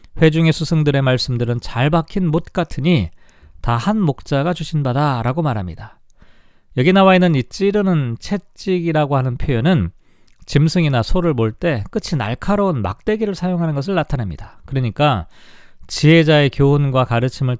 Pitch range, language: 125-180 Hz, Korean